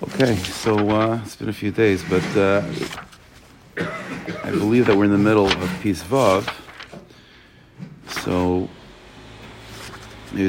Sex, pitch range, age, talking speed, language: male, 90-105 Hz, 40-59, 125 wpm, English